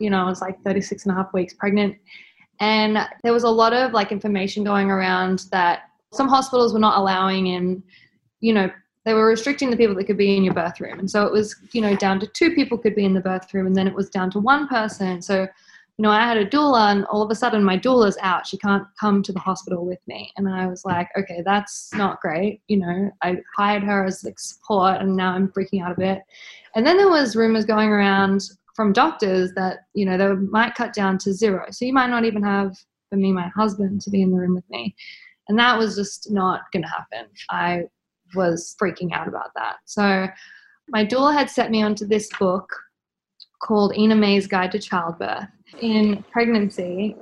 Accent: Australian